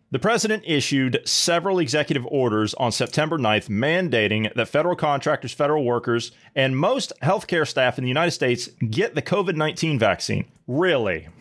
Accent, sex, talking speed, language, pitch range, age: American, male, 155 wpm, English, 115-150 Hz, 30-49